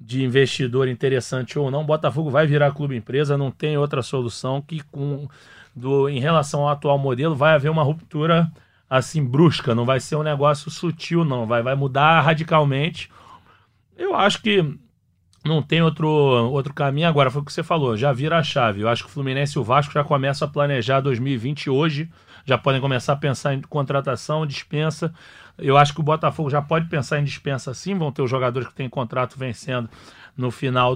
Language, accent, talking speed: Portuguese, Brazilian, 195 wpm